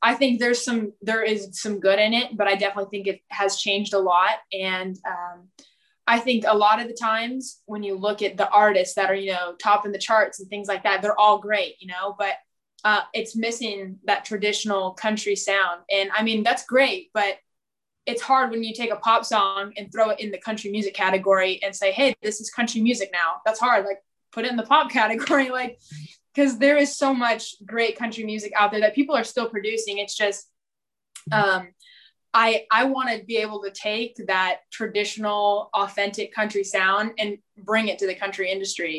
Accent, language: American, English